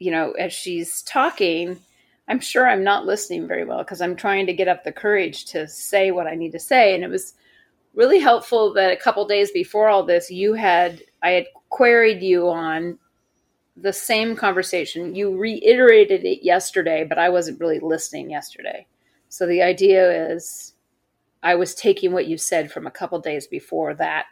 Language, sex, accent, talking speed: English, female, American, 185 wpm